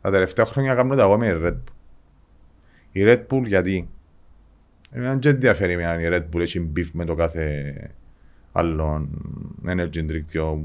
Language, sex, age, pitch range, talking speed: Greek, male, 30-49, 80-115 Hz, 140 wpm